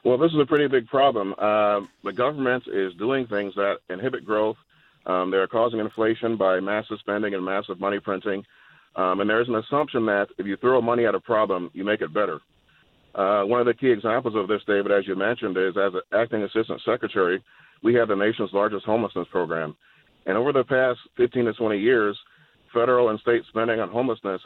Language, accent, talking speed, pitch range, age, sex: English, American, 205 wpm, 100-120 Hz, 40-59, male